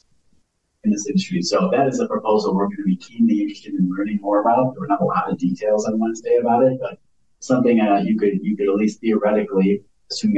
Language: English